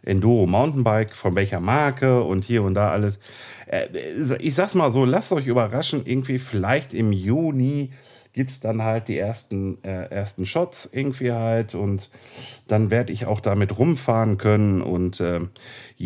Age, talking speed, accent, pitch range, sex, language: 40-59, 155 wpm, German, 100-130 Hz, male, German